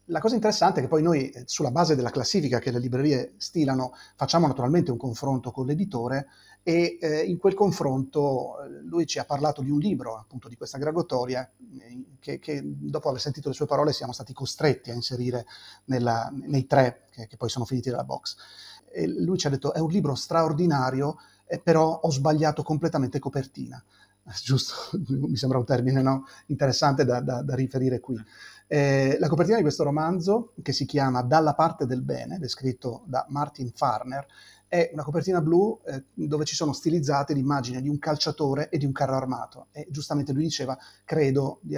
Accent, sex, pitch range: native, male, 130-155 Hz